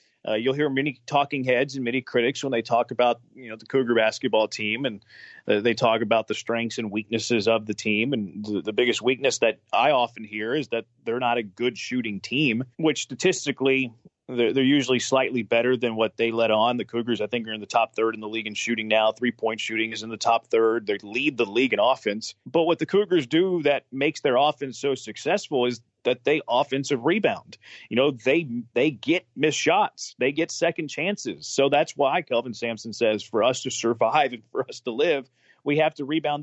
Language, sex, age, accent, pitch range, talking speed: English, male, 30-49, American, 115-150 Hz, 220 wpm